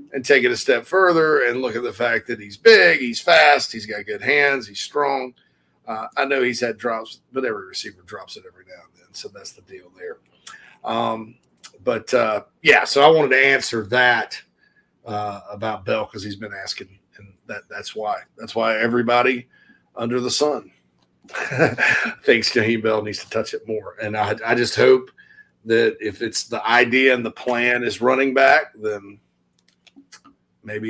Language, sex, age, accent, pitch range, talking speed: English, male, 40-59, American, 110-140 Hz, 185 wpm